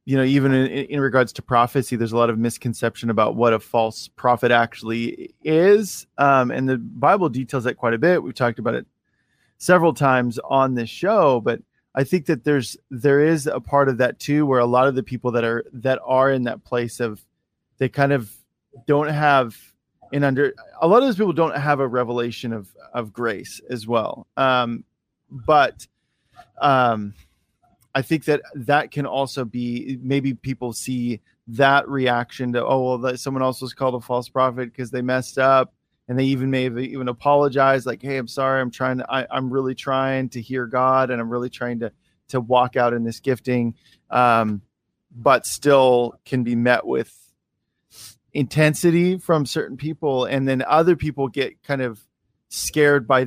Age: 20-39